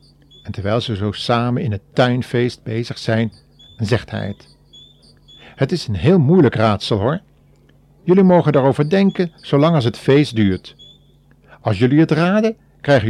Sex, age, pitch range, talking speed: male, 50-69, 110-165 Hz, 155 wpm